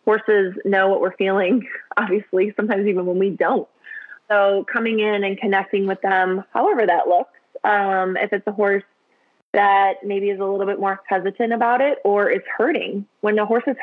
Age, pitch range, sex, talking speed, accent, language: 20-39, 195-220 Hz, female, 185 wpm, American, English